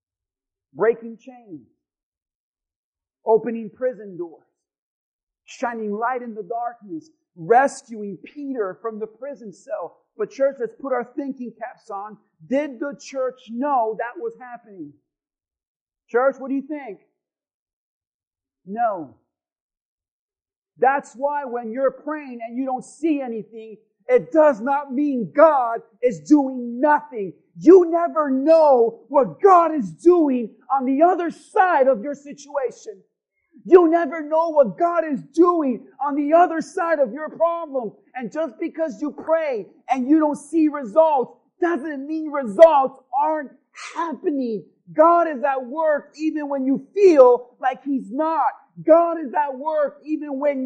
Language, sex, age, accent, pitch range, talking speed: English, male, 50-69, American, 235-315 Hz, 135 wpm